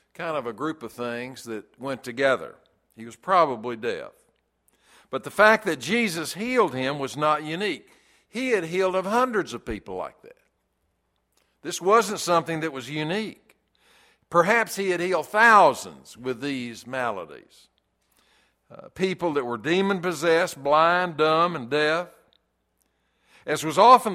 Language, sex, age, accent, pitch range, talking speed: English, male, 60-79, American, 135-190 Hz, 145 wpm